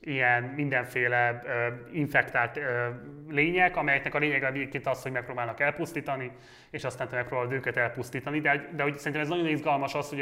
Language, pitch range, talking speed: Hungarian, 125-145 Hz, 155 wpm